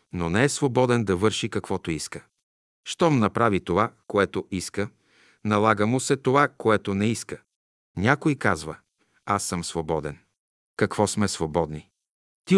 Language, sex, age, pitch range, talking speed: Bulgarian, male, 50-69, 90-120 Hz, 140 wpm